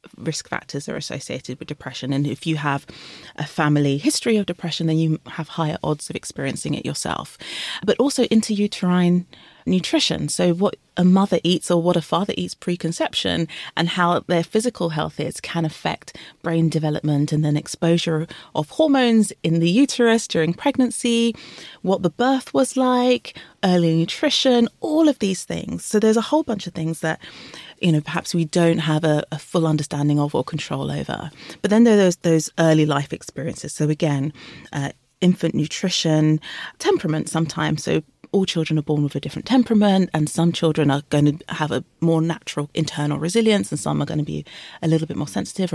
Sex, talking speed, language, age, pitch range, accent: female, 185 wpm, English, 30-49, 150-190 Hz, British